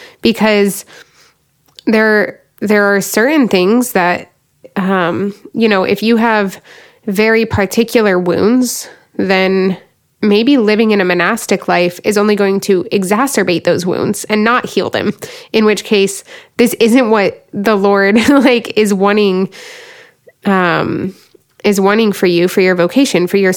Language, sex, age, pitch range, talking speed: English, female, 20-39, 185-230 Hz, 140 wpm